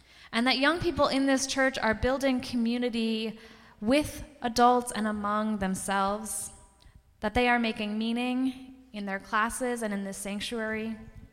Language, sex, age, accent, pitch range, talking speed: English, female, 10-29, American, 205-260 Hz, 145 wpm